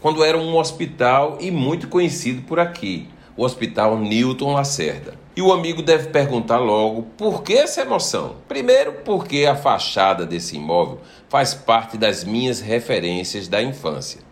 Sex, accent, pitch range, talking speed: male, Brazilian, 115-155 Hz, 150 wpm